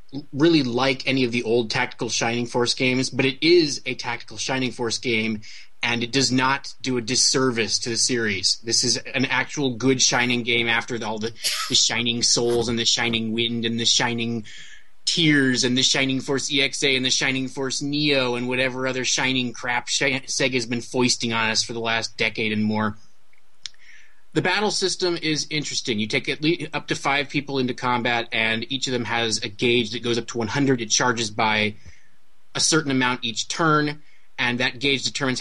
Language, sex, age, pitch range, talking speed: English, male, 20-39, 115-135 Hz, 190 wpm